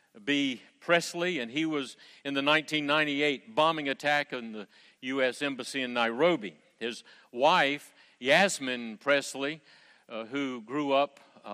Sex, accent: male, American